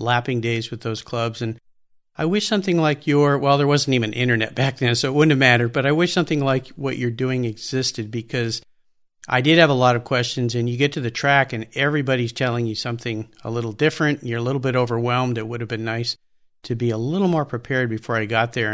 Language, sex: English, male